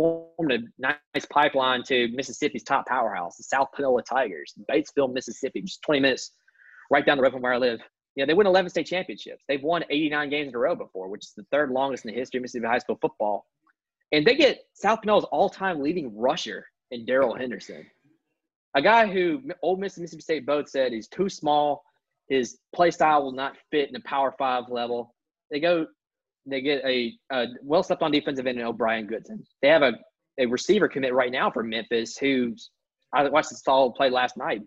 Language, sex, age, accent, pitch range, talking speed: English, male, 20-39, American, 130-175 Hz, 210 wpm